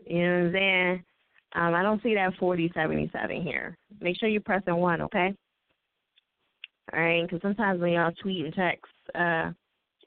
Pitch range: 165-240 Hz